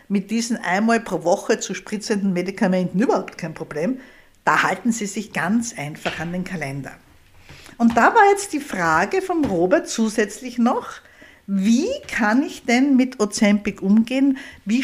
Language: German